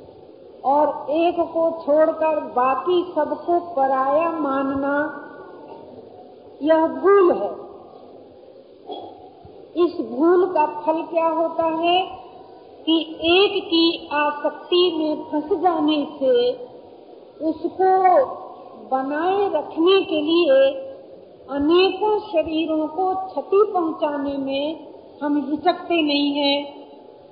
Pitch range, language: 290-370 Hz, Hindi